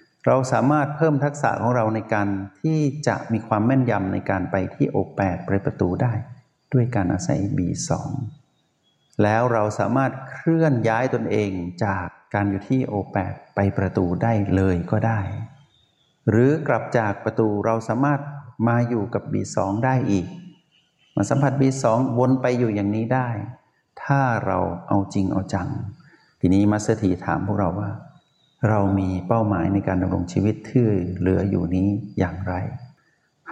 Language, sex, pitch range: Thai, male, 95-125 Hz